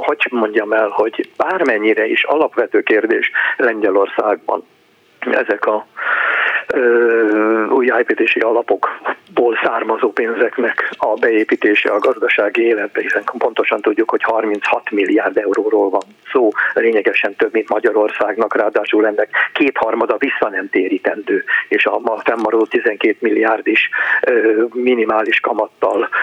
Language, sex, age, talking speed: Hungarian, male, 50-69, 110 wpm